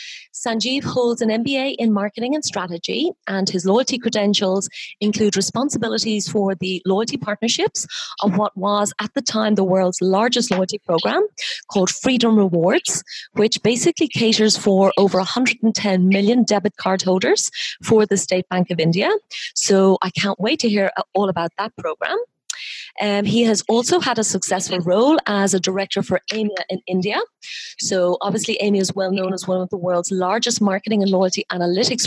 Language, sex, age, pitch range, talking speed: English, female, 30-49, 190-240 Hz, 165 wpm